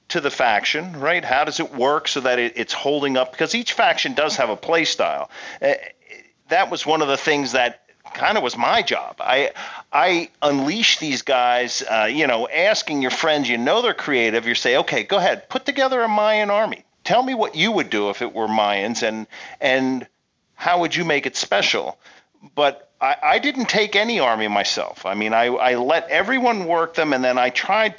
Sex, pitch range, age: male, 115-160 Hz, 40-59